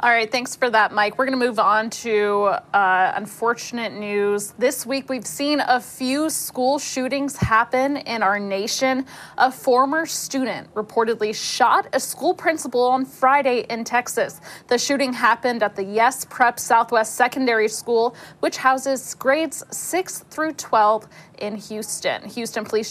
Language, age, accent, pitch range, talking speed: English, 20-39, American, 220-265 Hz, 155 wpm